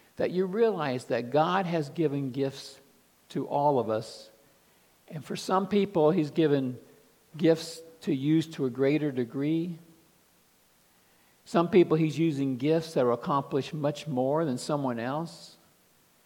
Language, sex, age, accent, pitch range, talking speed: English, male, 50-69, American, 130-170 Hz, 140 wpm